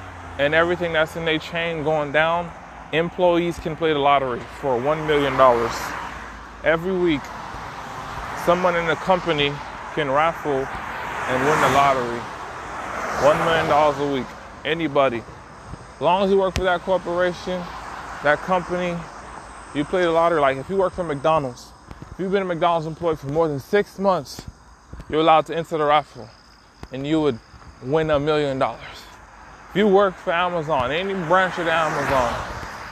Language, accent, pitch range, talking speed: English, American, 135-170 Hz, 155 wpm